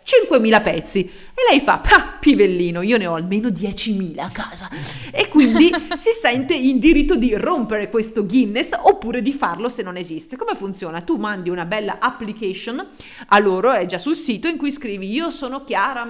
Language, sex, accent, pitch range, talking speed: Italian, female, native, 195-290 Hz, 175 wpm